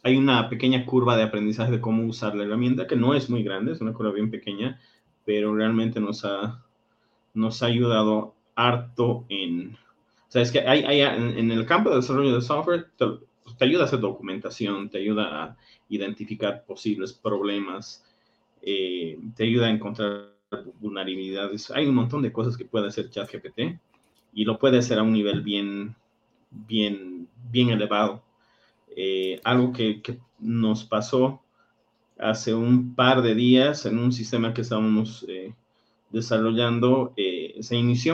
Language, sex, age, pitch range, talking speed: Spanish, male, 30-49, 105-125 Hz, 160 wpm